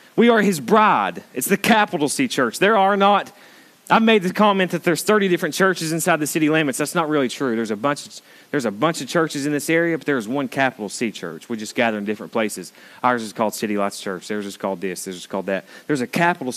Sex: male